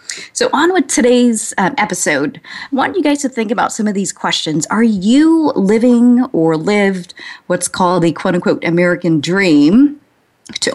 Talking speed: 160 wpm